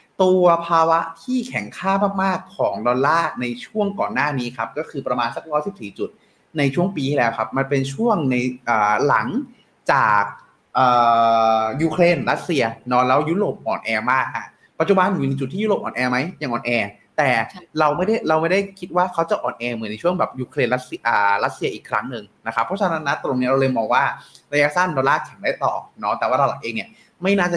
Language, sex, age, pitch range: Thai, male, 20-39, 125-175 Hz